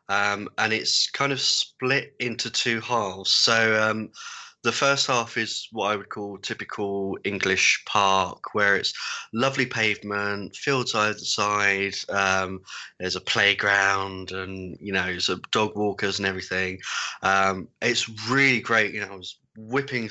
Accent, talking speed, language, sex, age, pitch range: British, 135 wpm, English, male, 20-39, 100-115 Hz